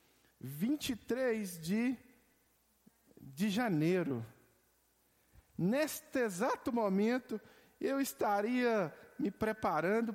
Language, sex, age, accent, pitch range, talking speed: Portuguese, male, 50-69, Brazilian, 190-255 Hz, 65 wpm